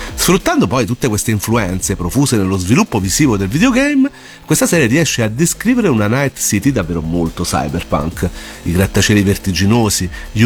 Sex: male